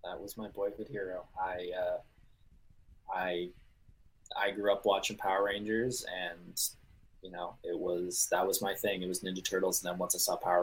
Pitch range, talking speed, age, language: 100-135 Hz, 185 wpm, 20-39, English